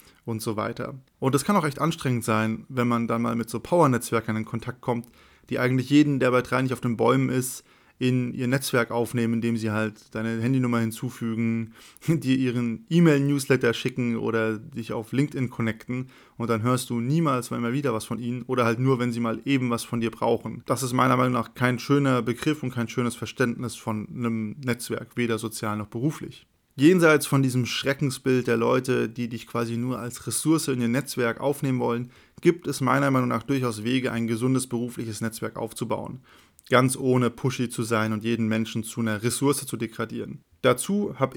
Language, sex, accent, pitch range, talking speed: German, male, German, 115-135 Hz, 195 wpm